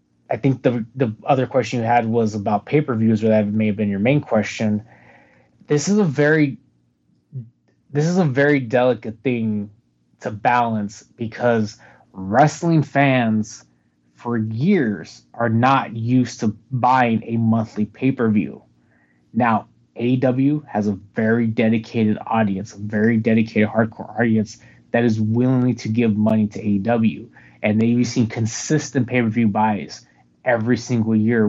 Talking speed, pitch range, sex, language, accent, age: 140 wpm, 105-130 Hz, male, English, American, 20-39